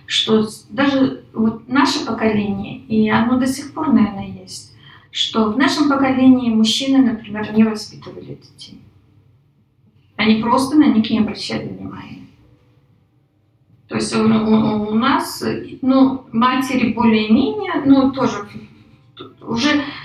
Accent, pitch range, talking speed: native, 200-265 Hz, 125 wpm